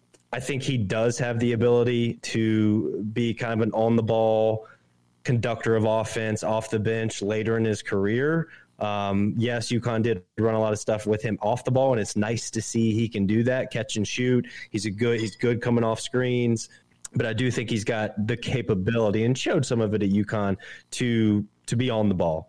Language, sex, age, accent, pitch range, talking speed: English, male, 20-39, American, 105-120 Hz, 215 wpm